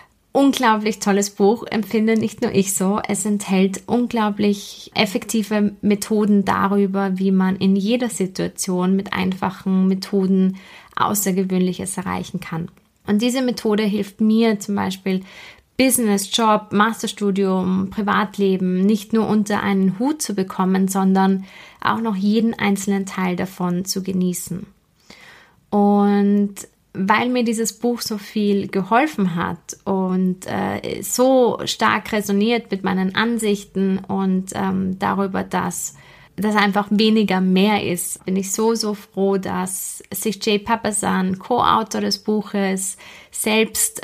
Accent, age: German, 20-39